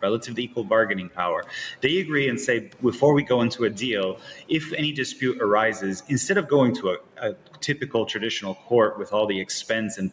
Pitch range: 105-135 Hz